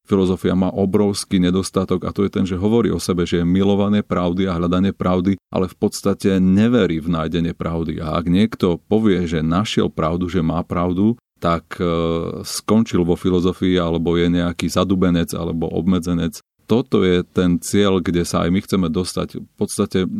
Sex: male